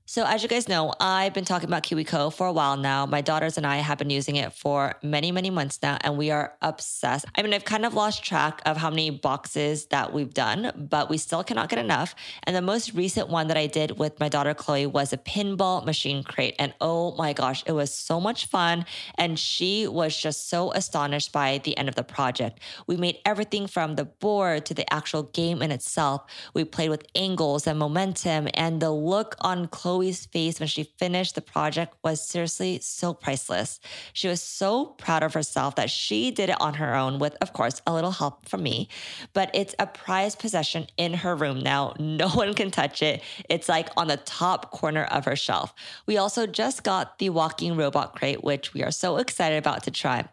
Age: 20-39